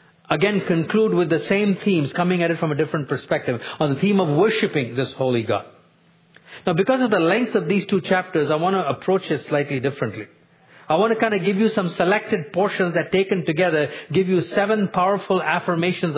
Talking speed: 205 wpm